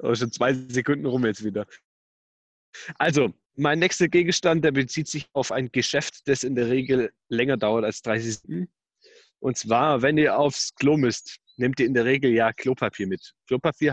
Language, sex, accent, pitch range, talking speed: German, male, German, 115-145 Hz, 180 wpm